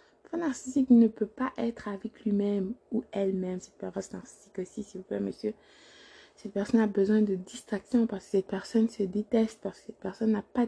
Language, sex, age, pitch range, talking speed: French, female, 20-39, 185-220 Hz, 200 wpm